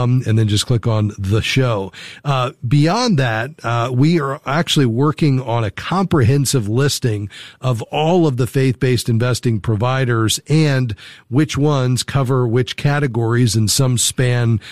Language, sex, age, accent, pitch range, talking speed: English, male, 40-59, American, 115-140 Hz, 145 wpm